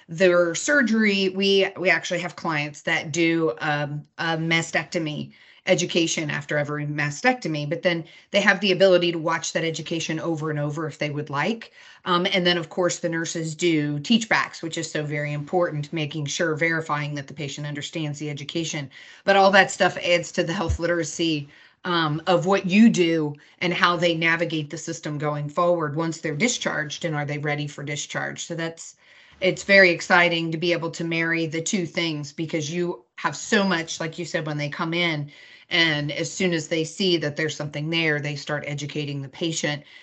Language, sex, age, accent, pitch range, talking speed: English, female, 30-49, American, 150-175 Hz, 190 wpm